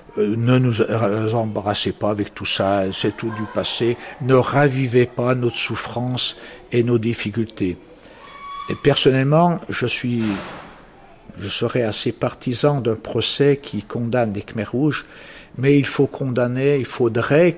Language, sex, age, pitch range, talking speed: French, male, 60-79, 115-150 Hz, 135 wpm